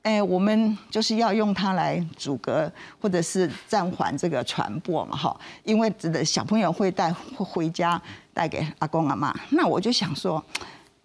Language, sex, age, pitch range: Chinese, female, 50-69, 190-320 Hz